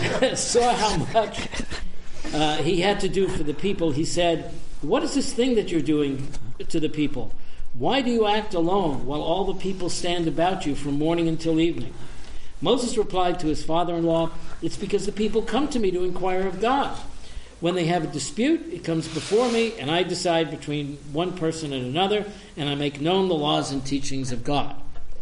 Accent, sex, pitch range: American, male, 150-200 Hz